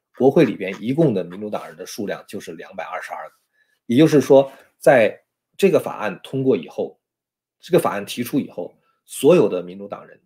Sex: male